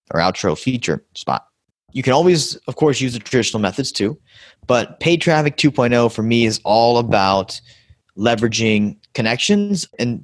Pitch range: 100-130 Hz